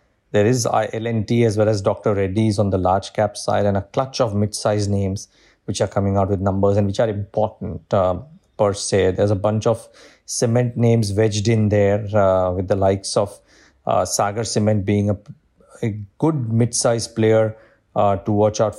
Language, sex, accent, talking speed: English, male, Indian, 190 wpm